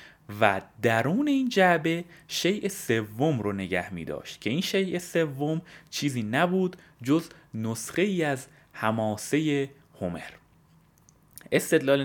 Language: Persian